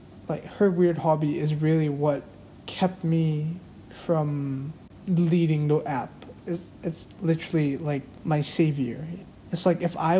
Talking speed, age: 135 wpm, 20-39